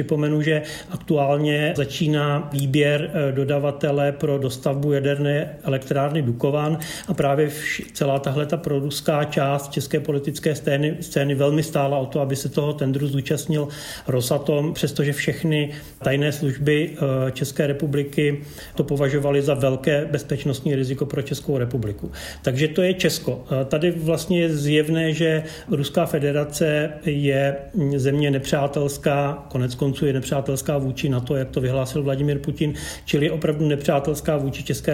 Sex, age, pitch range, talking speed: male, 40-59, 140-160 Hz, 130 wpm